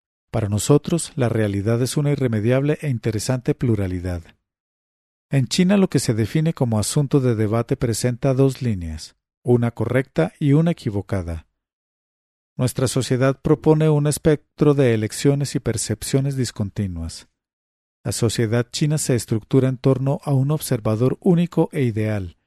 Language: English